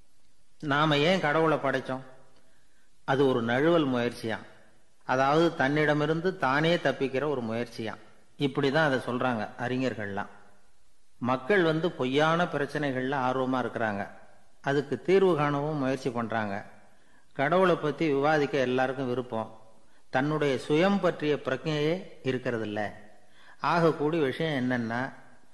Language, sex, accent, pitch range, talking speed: Tamil, male, native, 120-150 Hz, 100 wpm